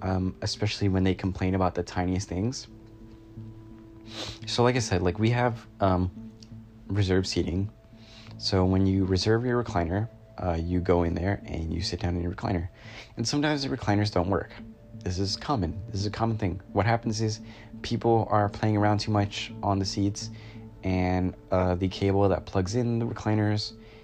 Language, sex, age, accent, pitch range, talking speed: English, male, 20-39, American, 90-110 Hz, 180 wpm